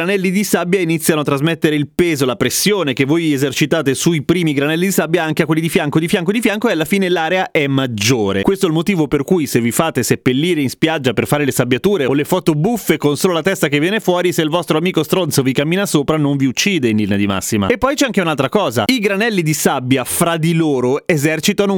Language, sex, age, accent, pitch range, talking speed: Italian, male, 30-49, native, 135-180 Hz, 245 wpm